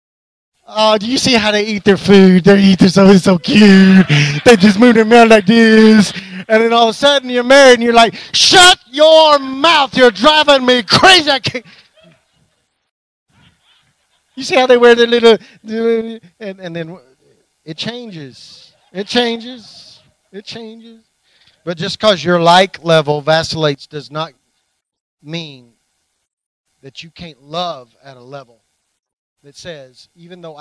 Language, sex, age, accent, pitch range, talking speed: English, male, 30-49, American, 155-230 Hz, 155 wpm